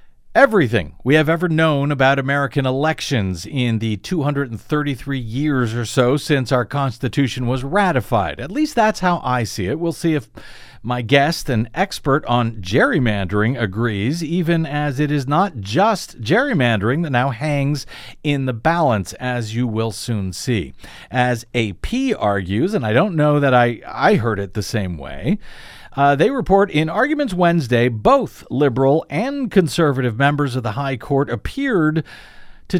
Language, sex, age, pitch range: English, male, 50-69, 120-160 Hz